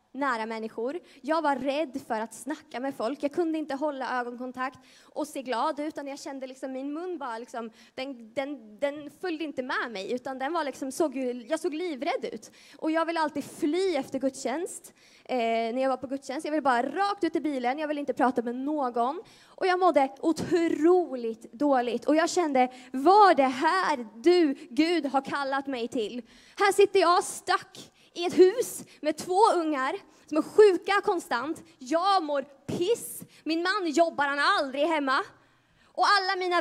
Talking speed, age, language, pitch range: 185 wpm, 20-39, Swedish, 270-355 Hz